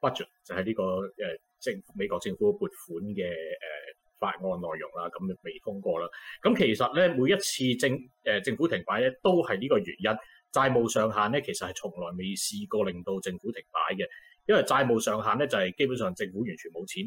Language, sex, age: Chinese, male, 30-49